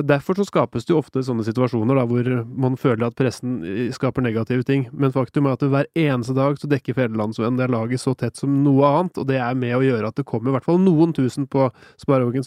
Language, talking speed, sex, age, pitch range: English, 240 wpm, male, 20-39, 130-150 Hz